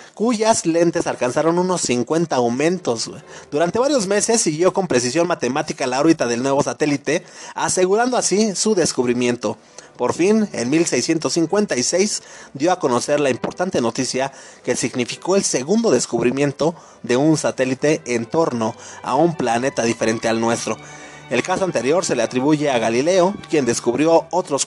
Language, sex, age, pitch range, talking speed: Spanish, male, 30-49, 135-195 Hz, 145 wpm